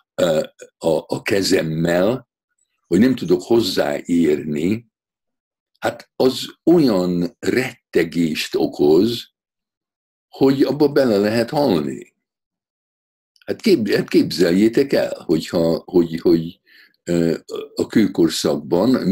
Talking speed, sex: 85 wpm, male